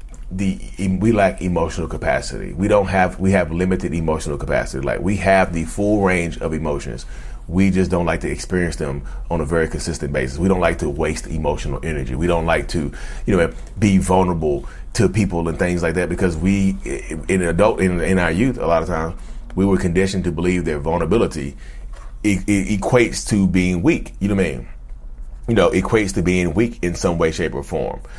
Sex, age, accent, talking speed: male, 30-49, American, 205 wpm